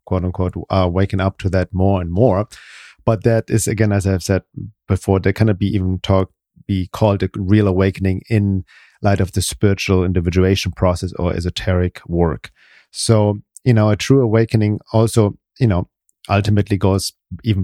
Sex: male